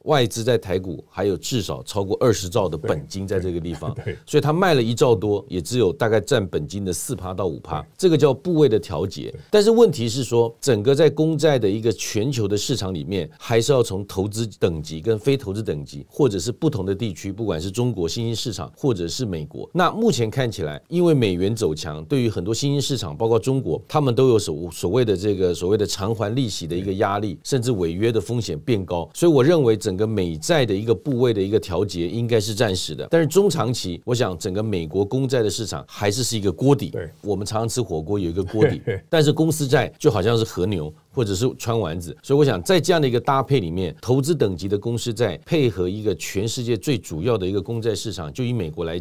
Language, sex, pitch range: Chinese, male, 95-130 Hz